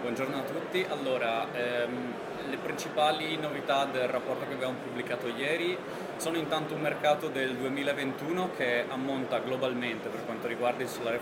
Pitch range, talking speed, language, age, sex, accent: 115-135 Hz, 150 wpm, Italian, 20-39, male, native